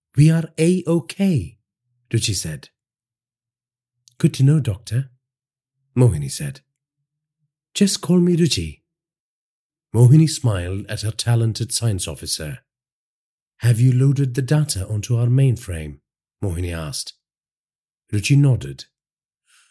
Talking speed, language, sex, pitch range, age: 105 wpm, English, male, 105-155 Hz, 40-59